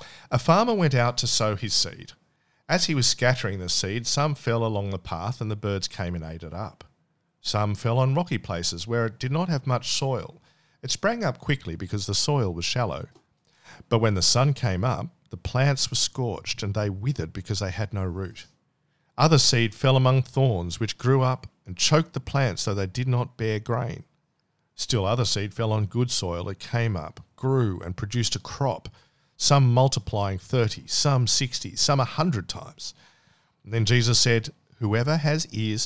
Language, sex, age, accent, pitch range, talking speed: English, male, 50-69, Australian, 105-145 Hz, 190 wpm